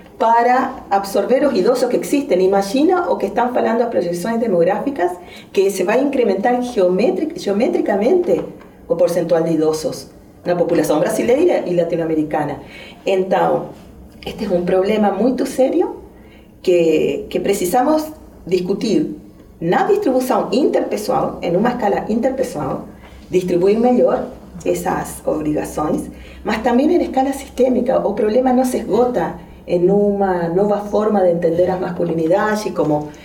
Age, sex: 40-59, female